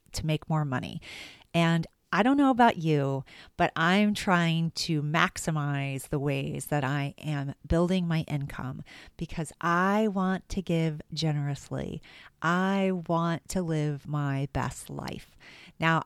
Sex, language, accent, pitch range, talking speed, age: female, English, American, 145-180 Hz, 140 wpm, 40-59